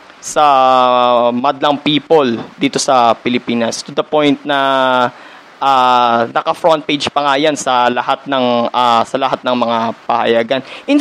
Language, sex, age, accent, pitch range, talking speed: Filipino, male, 20-39, native, 140-195 Hz, 140 wpm